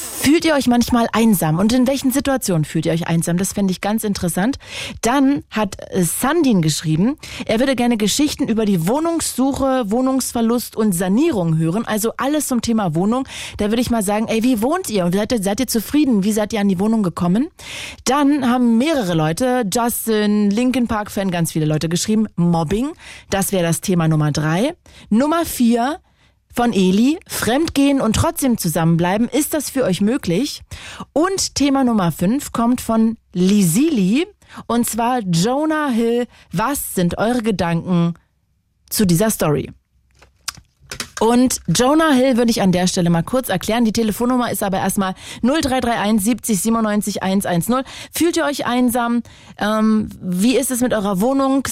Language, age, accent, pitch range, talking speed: German, 30-49, German, 195-255 Hz, 165 wpm